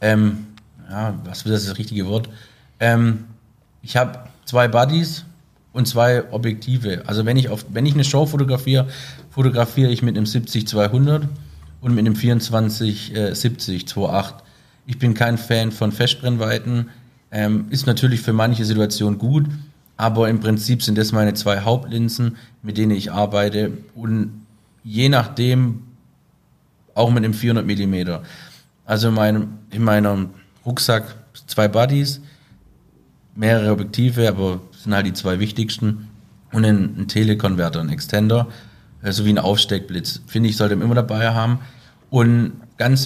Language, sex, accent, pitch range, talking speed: German, male, German, 105-120 Hz, 140 wpm